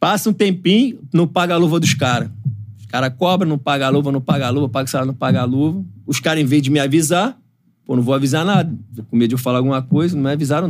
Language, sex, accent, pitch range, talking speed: Portuguese, male, Brazilian, 120-150 Hz, 275 wpm